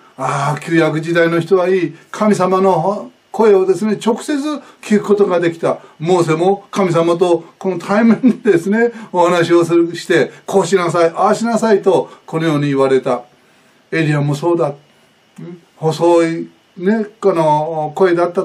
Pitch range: 150-200 Hz